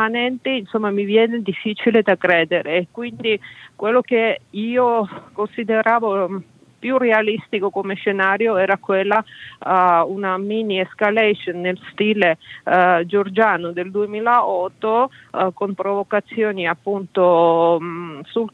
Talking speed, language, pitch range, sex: 105 wpm, Italian, 180-215 Hz, female